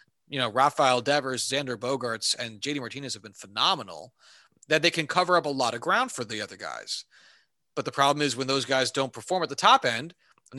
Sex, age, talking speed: male, 30-49, 220 wpm